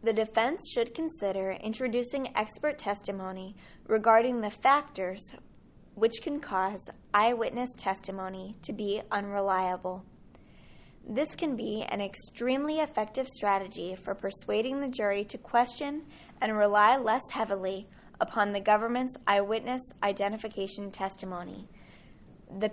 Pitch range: 195-245 Hz